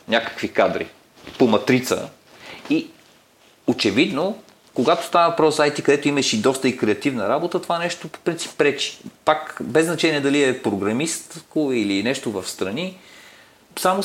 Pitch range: 115-185 Hz